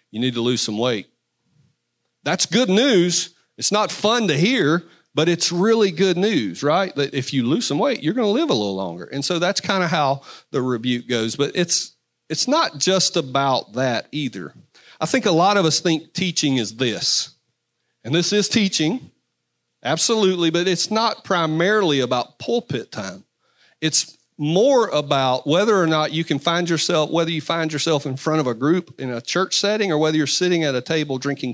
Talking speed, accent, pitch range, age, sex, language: 195 wpm, American, 115-170 Hz, 40-59, male, English